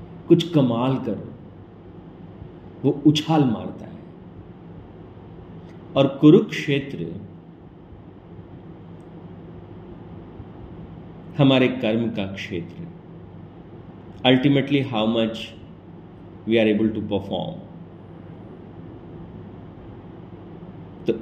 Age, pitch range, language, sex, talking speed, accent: 40-59, 100-125 Hz, Hindi, male, 60 wpm, native